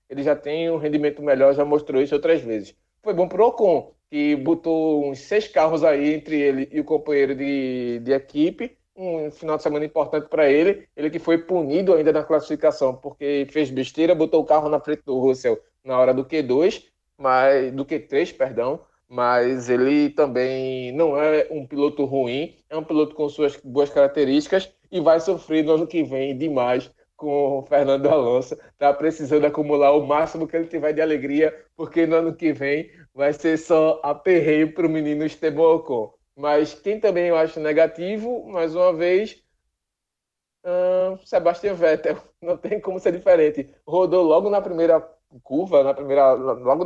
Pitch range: 140-165 Hz